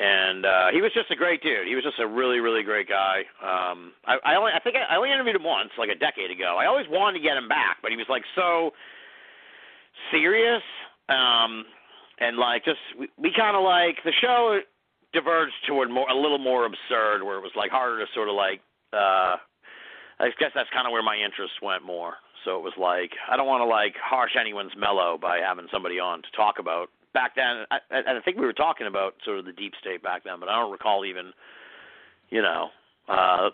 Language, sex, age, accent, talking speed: English, male, 50-69, American, 220 wpm